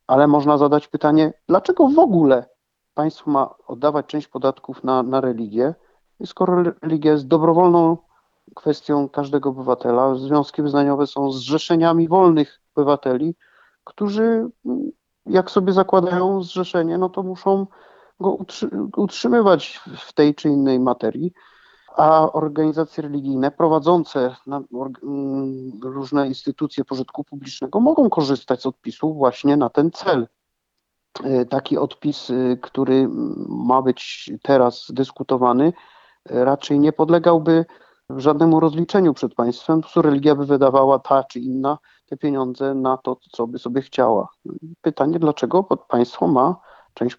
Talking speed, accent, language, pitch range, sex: 120 wpm, native, Polish, 130-165 Hz, male